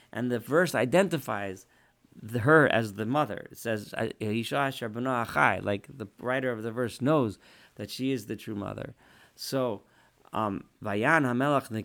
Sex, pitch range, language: male, 105-130 Hz, English